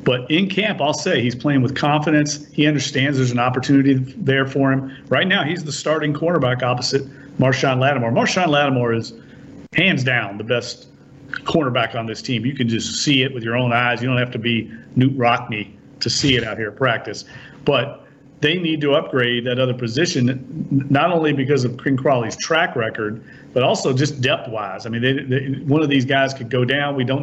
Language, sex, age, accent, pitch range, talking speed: English, male, 40-59, American, 125-145 Hz, 205 wpm